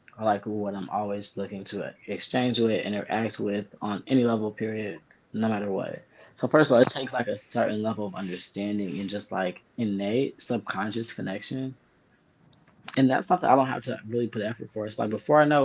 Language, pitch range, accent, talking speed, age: English, 105-125 Hz, American, 200 wpm, 20-39